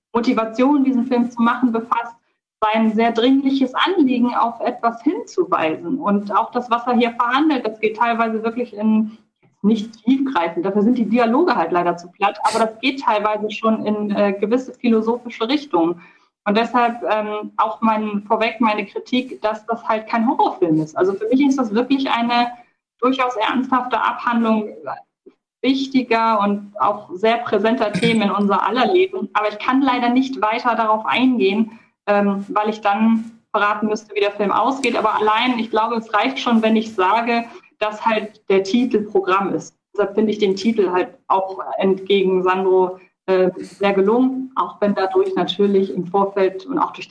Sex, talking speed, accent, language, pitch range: female, 170 wpm, German, German, 200-240 Hz